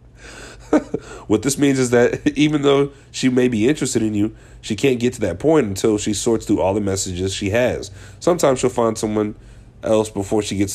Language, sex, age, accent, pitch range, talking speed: English, male, 30-49, American, 100-125 Hz, 200 wpm